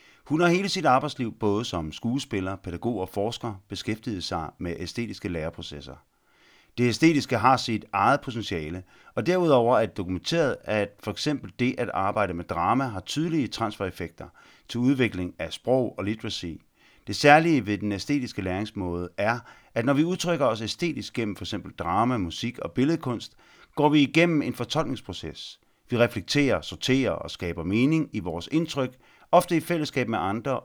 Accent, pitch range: native, 95-130 Hz